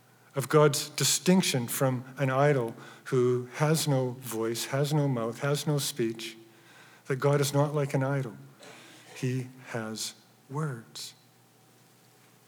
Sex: male